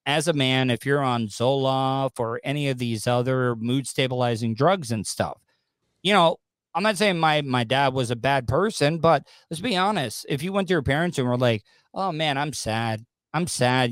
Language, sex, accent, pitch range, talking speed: English, male, American, 120-165 Hz, 205 wpm